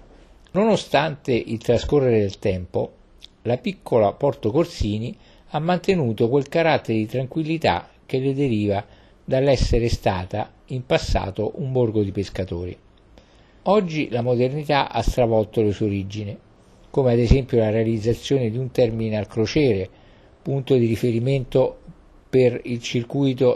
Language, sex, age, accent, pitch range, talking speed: Italian, male, 50-69, native, 100-135 Hz, 125 wpm